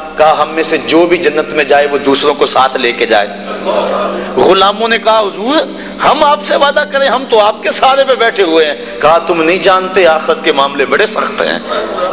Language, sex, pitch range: Urdu, male, 165-260 Hz